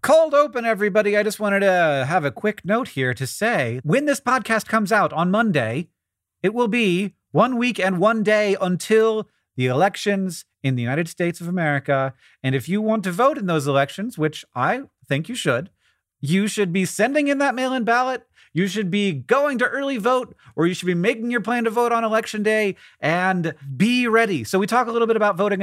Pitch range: 155-230 Hz